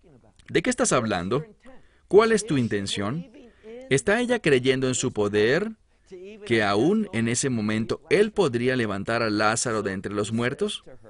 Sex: male